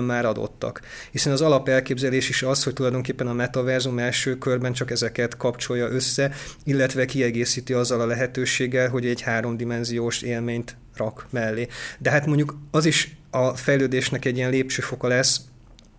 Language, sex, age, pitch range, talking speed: Hungarian, male, 30-49, 120-135 Hz, 150 wpm